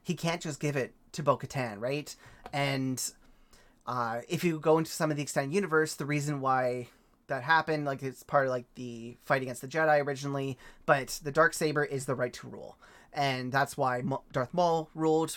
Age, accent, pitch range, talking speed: 30-49, American, 135-160 Hz, 190 wpm